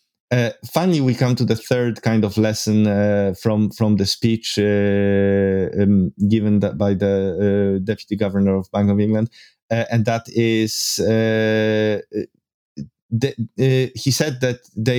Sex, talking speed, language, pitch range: male, 155 wpm, English, 100-125 Hz